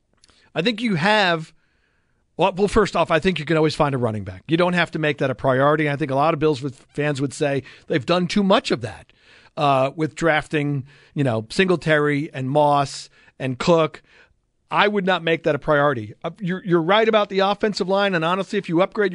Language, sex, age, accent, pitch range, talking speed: English, male, 50-69, American, 145-190 Hz, 215 wpm